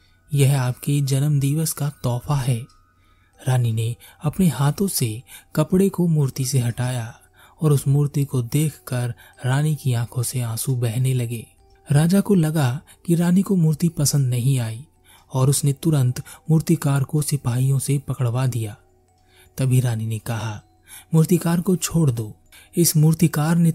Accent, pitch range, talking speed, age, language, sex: native, 120-155 Hz, 150 wpm, 30-49, Hindi, male